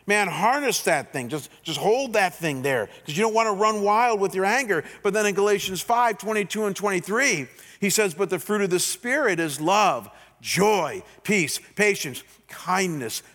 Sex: male